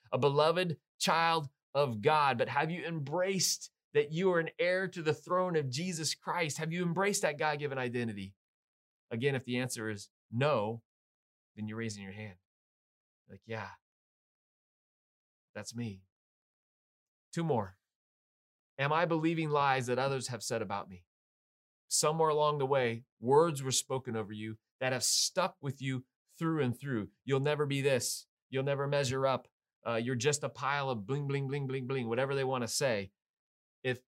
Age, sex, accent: 30-49, male, American